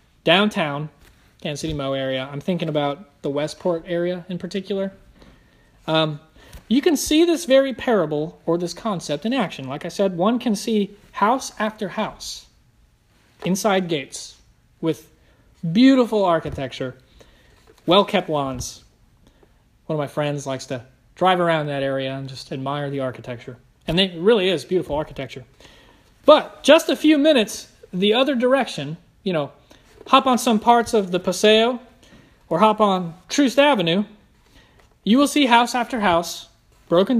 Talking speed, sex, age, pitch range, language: 145 wpm, male, 30-49, 145-210 Hz, English